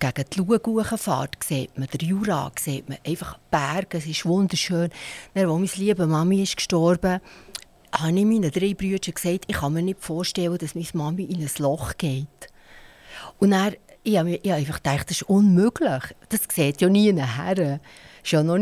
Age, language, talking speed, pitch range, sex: 60-79, German, 170 wpm, 160-195 Hz, female